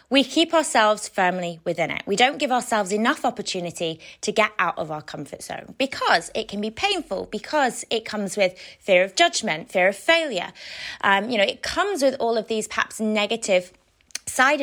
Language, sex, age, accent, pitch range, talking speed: English, female, 20-39, British, 205-295 Hz, 190 wpm